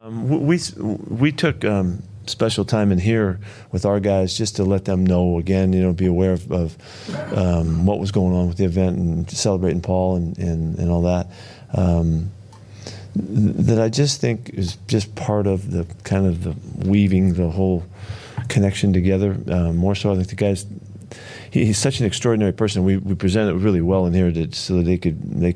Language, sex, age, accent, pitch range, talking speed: English, male, 40-59, American, 90-105 Hz, 200 wpm